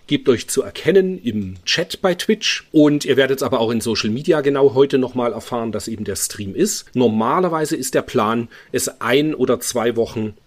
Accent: German